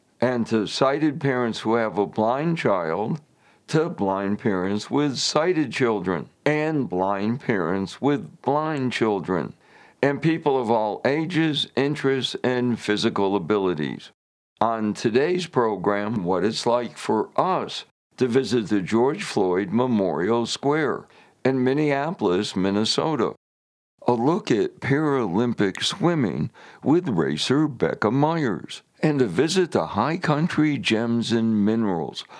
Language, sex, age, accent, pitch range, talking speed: English, male, 60-79, American, 110-145 Hz, 120 wpm